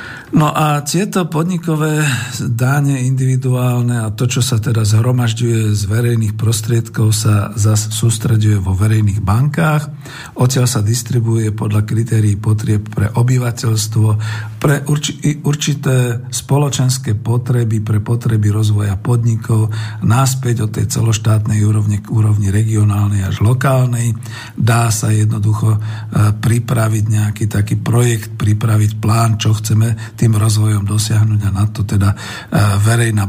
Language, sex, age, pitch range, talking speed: Slovak, male, 50-69, 105-130 Hz, 120 wpm